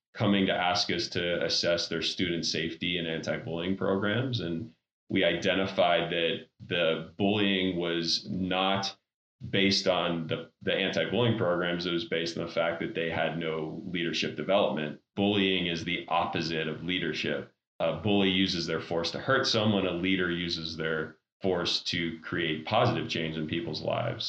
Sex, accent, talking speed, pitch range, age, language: male, American, 160 wpm, 85-100 Hz, 30-49, English